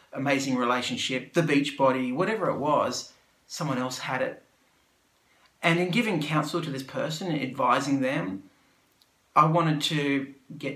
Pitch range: 130-170 Hz